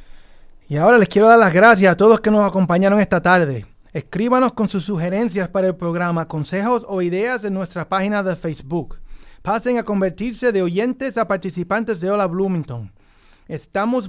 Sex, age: male, 30-49